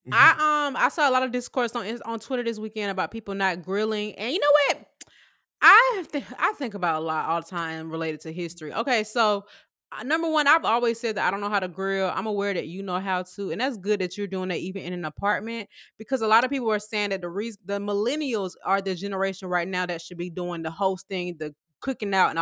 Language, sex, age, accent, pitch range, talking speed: English, female, 20-39, American, 185-240 Hz, 250 wpm